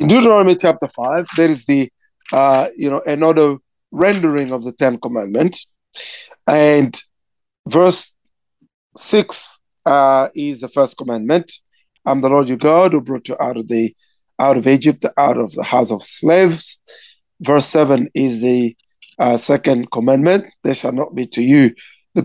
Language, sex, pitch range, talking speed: English, male, 130-175 Hz, 155 wpm